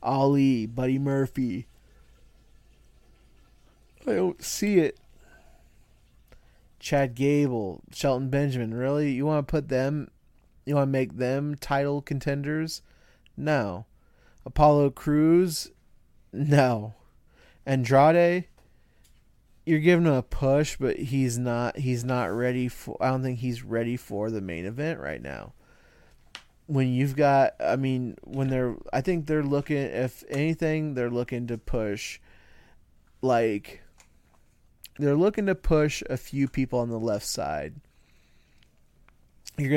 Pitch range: 115-145 Hz